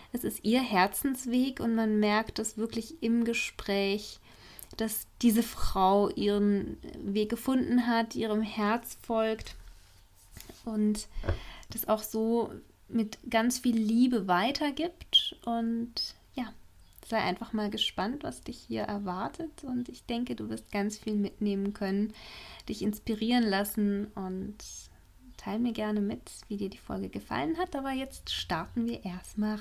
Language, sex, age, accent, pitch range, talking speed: German, female, 20-39, German, 190-240 Hz, 140 wpm